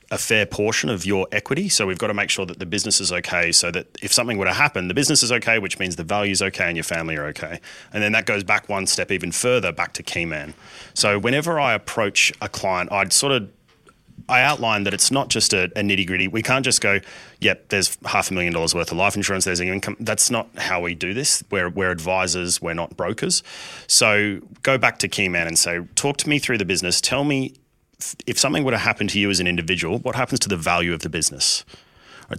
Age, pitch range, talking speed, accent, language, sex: 30-49, 90-110 Hz, 245 wpm, Australian, English, male